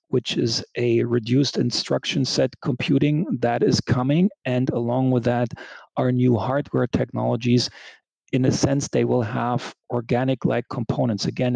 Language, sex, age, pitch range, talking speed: English, male, 40-59, 120-140 Hz, 140 wpm